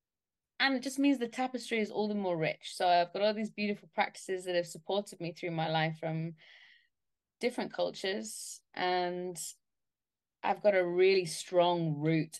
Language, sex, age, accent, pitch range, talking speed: English, female, 20-39, British, 170-215 Hz, 170 wpm